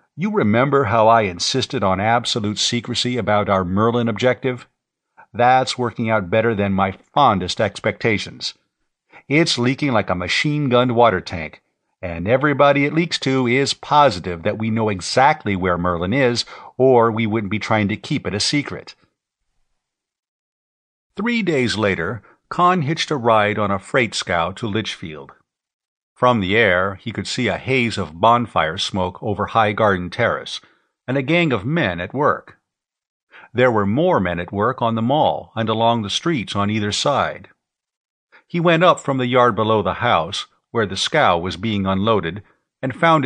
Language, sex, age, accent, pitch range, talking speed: English, male, 50-69, American, 100-130 Hz, 165 wpm